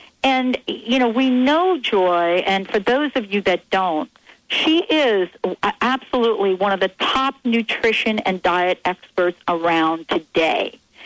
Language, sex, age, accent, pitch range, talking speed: English, female, 50-69, American, 190-260 Hz, 140 wpm